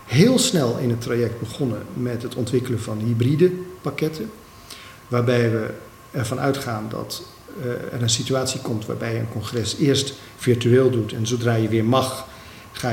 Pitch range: 115-145 Hz